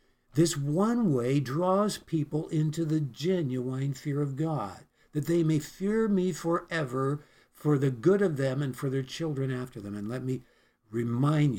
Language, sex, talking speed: English, male, 165 wpm